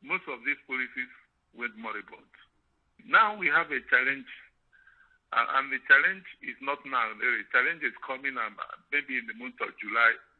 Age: 60-79